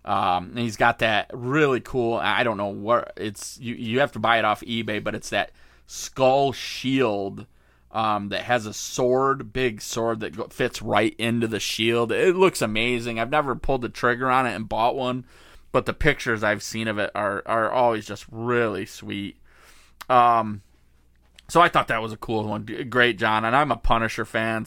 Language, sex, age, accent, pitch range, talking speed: English, male, 20-39, American, 105-125 Hz, 195 wpm